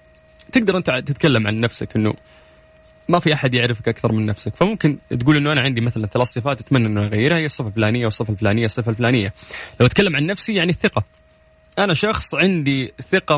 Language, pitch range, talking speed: Arabic, 110-155 Hz, 185 wpm